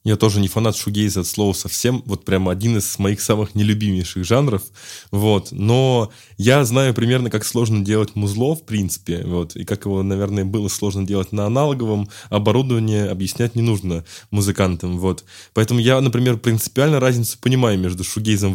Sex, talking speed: male, 165 wpm